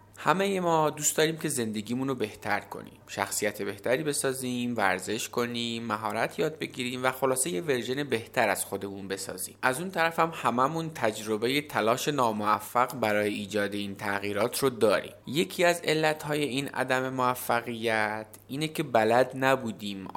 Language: Persian